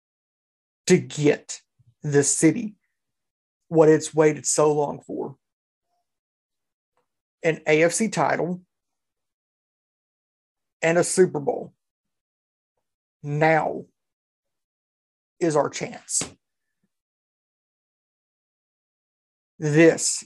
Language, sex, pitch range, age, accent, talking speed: English, male, 145-175 Hz, 50-69, American, 65 wpm